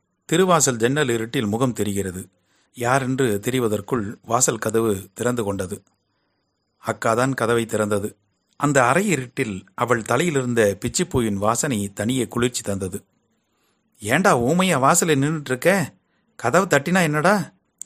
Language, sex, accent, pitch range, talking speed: Tamil, male, native, 110-150 Hz, 105 wpm